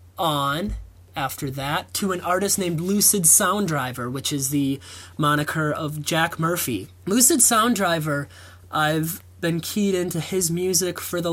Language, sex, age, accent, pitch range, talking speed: English, male, 20-39, American, 150-185 Hz, 140 wpm